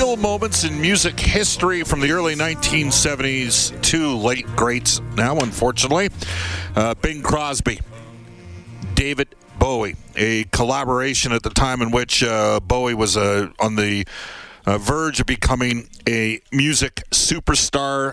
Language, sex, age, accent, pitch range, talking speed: English, male, 50-69, American, 100-130 Hz, 125 wpm